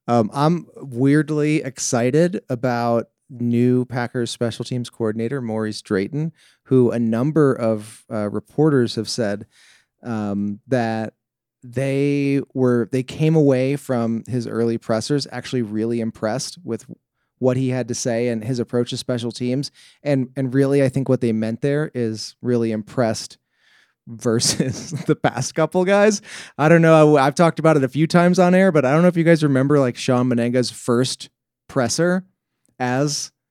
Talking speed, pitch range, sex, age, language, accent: 160 wpm, 120-150 Hz, male, 30-49, English, American